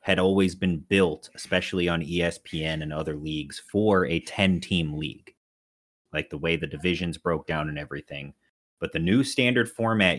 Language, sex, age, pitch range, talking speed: English, male, 30-49, 80-95 Hz, 165 wpm